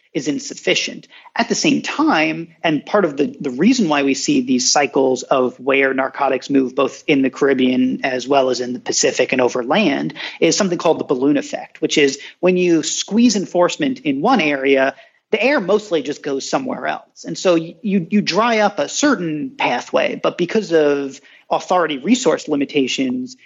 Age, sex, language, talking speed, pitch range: 40-59, male, English, 180 wpm, 140-210 Hz